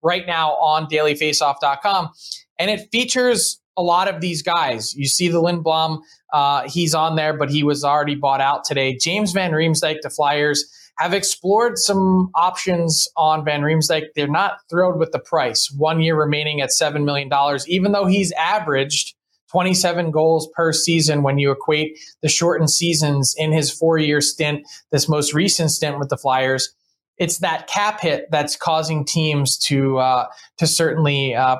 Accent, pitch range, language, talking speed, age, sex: American, 145-175 Hz, English, 165 wpm, 20-39, male